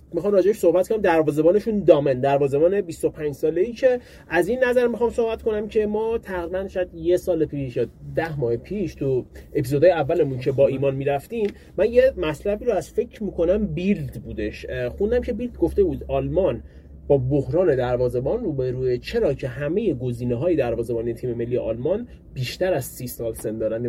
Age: 30-49